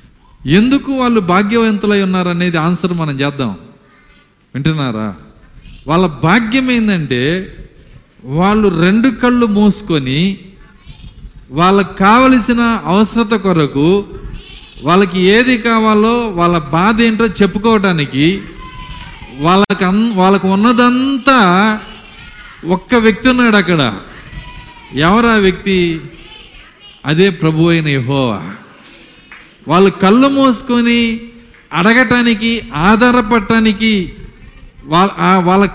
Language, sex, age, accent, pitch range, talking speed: Telugu, male, 50-69, native, 165-230 Hz, 75 wpm